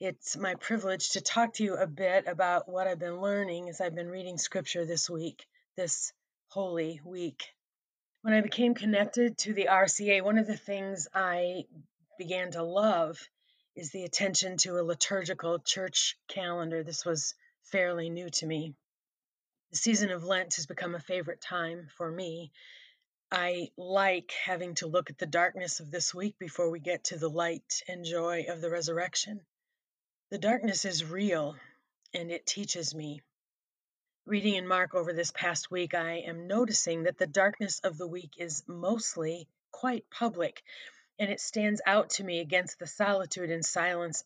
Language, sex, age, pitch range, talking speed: English, female, 30-49, 170-195 Hz, 170 wpm